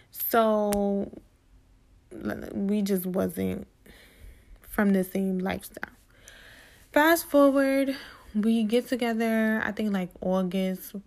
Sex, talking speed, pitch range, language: female, 90 wpm, 185-230 Hz, English